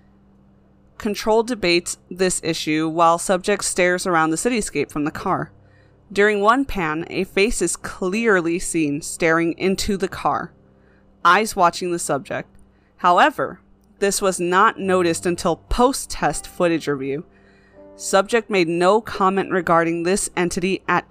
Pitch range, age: 165-205 Hz, 20-39